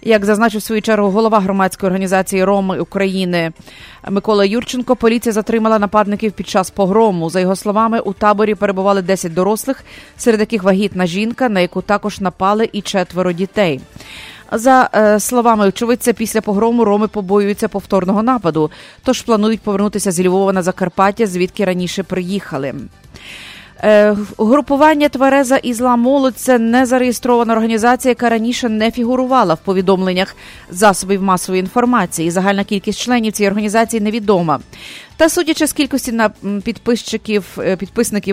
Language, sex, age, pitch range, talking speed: English, female, 30-49, 195-230 Hz, 130 wpm